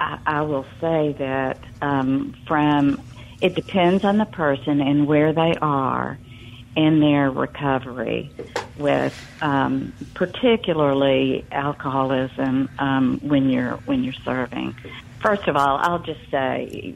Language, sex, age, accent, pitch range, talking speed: English, female, 50-69, American, 130-160 Hz, 125 wpm